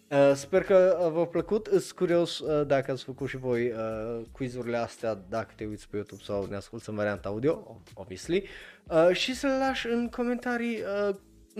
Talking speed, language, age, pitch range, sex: 185 wpm, Romanian, 20-39, 125-190 Hz, male